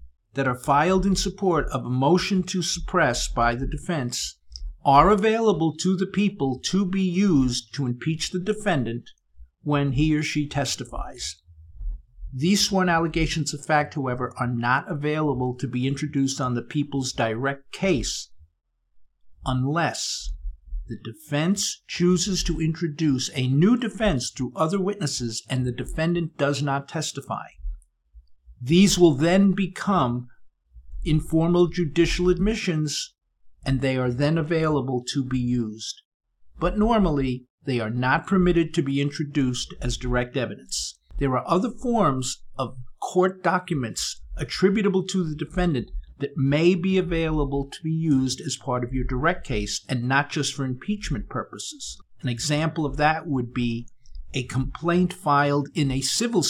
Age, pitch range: 50-69, 125-170 Hz